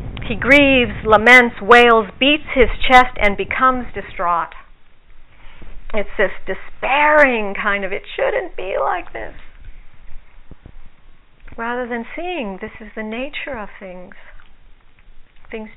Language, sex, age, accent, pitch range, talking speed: English, female, 50-69, American, 195-255 Hz, 115 wpm